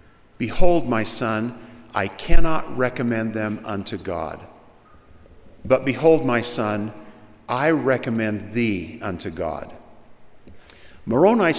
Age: 50-69